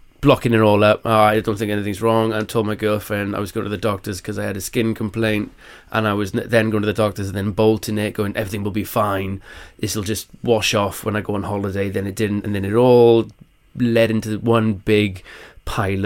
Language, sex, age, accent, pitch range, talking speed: English, male, 20-39, British, 105-120 Hz, 240 wpm